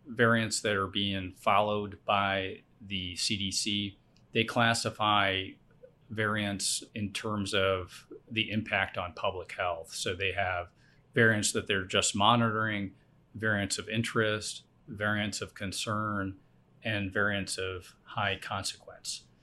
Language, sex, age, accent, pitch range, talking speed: English, male, 40-59, American, 95-110 Hz, 115 wpm